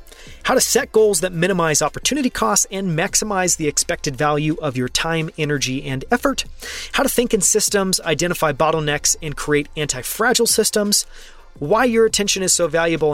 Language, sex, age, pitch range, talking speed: English, male, 30-49, 150-205 Hz, 165 wpm